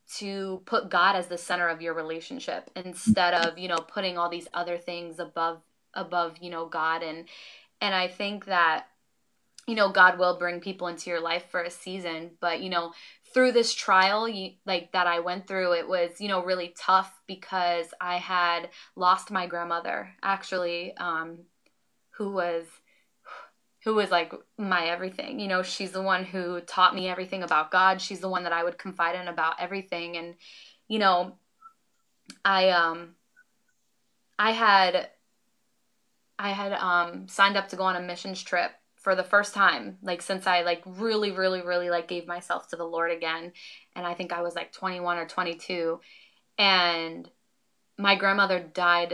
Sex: female